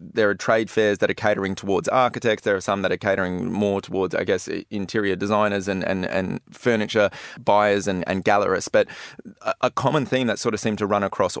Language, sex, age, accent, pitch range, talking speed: English, male, 20-39, Australian, 100-115 Hz, 210 wpm